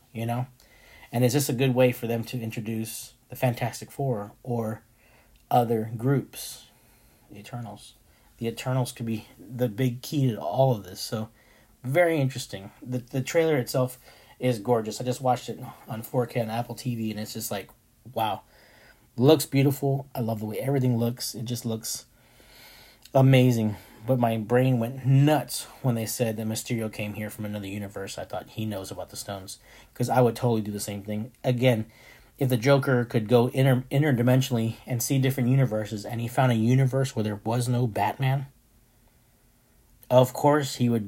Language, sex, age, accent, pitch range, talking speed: English, male, 30-49, American, 110-130 Hz, 180 wpm